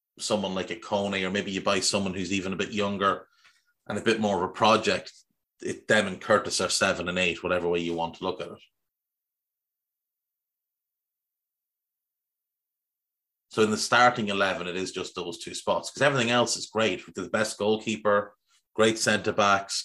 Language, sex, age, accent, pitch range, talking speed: English, male, 30-49, Irish, 95-110 Hz, 175 wpm